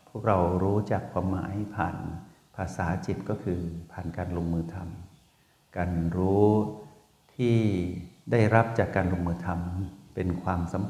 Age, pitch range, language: 60-79, 90-105 Hz, Thai